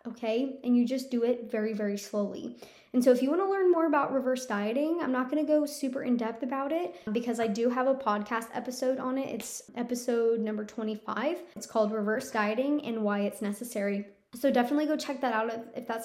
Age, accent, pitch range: 20-39, American, 215-260 Hz